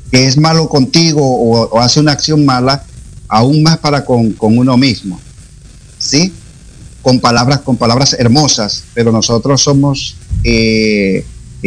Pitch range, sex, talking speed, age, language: 115-145 Hz, male, 140 wpm, 50-69, Spanish